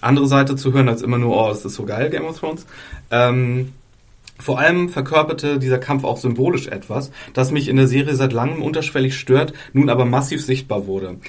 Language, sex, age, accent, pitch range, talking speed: German, male, 30-49, German, 120-140 Hz, 200 wpm